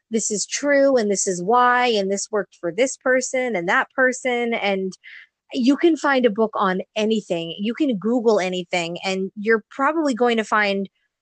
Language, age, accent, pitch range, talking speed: English, 20-39, American, 195-240 Hz, 180 wpm